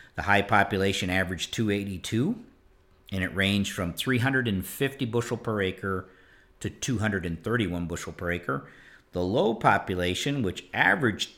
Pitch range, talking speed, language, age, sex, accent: 95-110 Hz, 120 wpm, English, 50-69, male, American